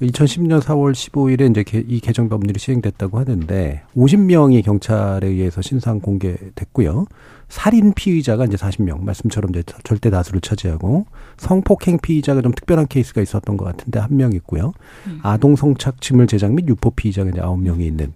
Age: 40-59